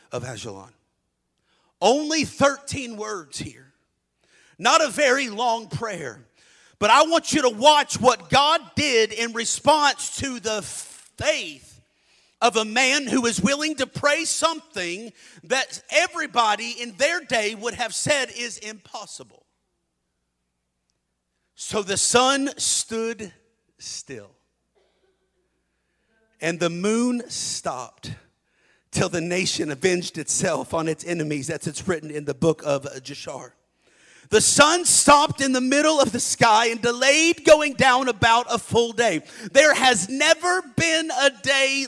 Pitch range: 190-275 Hz